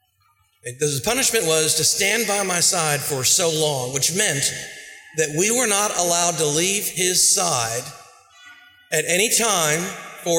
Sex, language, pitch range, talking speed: male, English, 150-205 Hz, 155 wpm